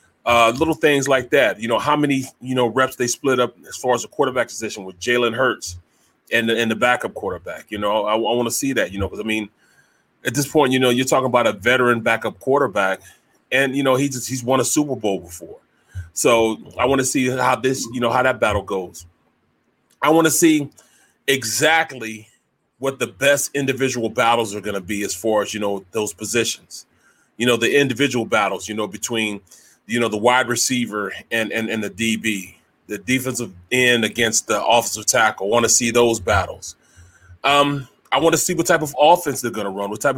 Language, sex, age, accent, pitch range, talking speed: English, male, 30-49, American, 105-135 Hz, 215 wpm